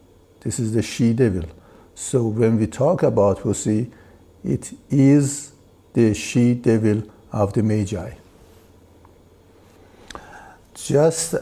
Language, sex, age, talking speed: English, male, 60-79, 95 wpm